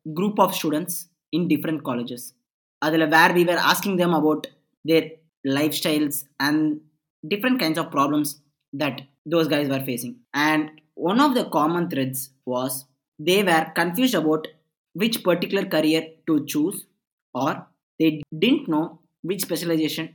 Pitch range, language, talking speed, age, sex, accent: 145-170 Hz, Tamil, 140 wpm, 20-39, male, native